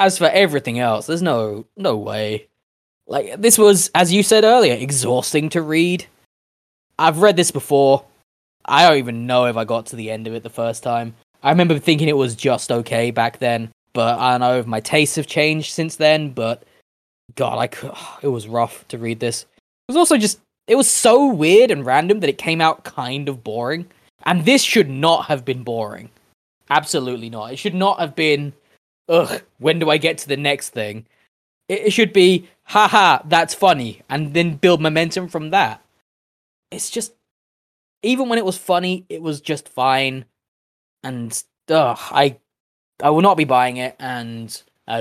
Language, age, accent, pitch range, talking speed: English, 20-39, British, 115-165 Hz, 190 wpm